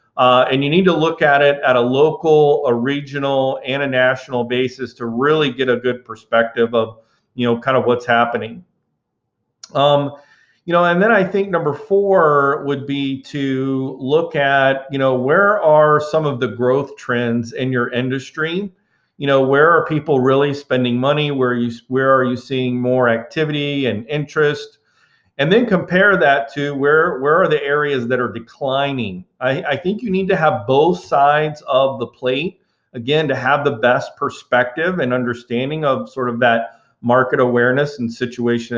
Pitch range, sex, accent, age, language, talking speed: 125-150 Hz, male, American, 40-59, English, 180 wpm